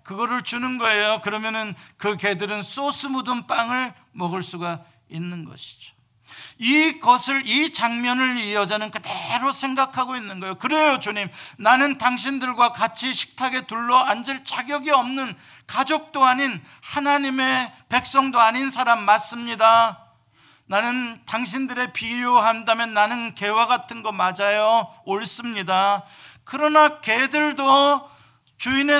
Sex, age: male, 50-69